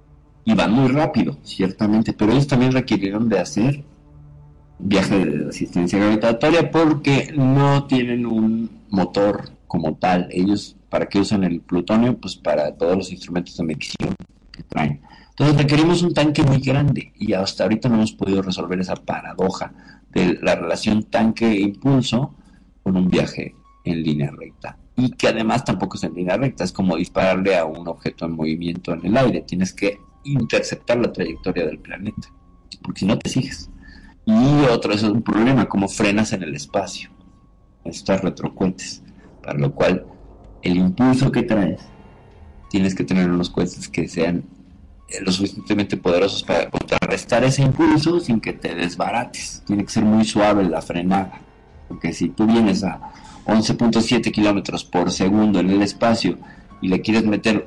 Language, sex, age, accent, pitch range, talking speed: Spanish, male, 50-69, Mexican, 90-115 Hz, 160 wpm